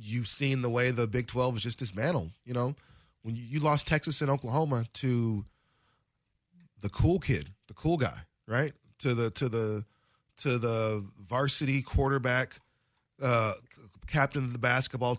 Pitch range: 115-145 Hz